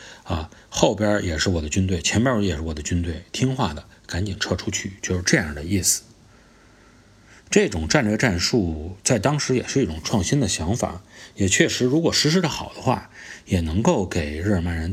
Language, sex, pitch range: Chinese, male, 90-115 Hz